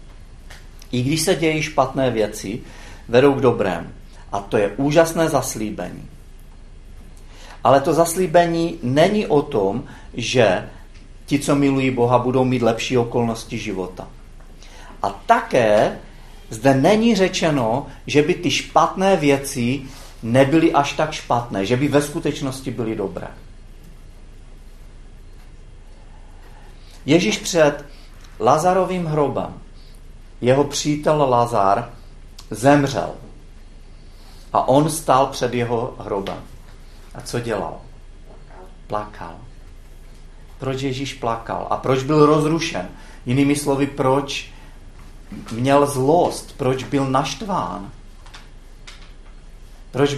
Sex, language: male, Czech